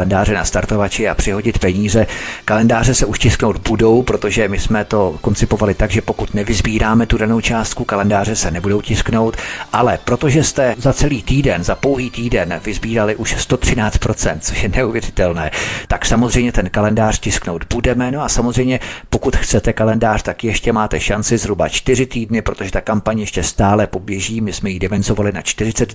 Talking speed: 165 wpm